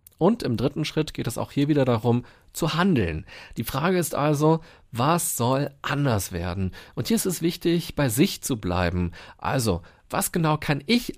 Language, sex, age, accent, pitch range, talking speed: German, male, 40-59, German, 120-155 Hz, 185 wpm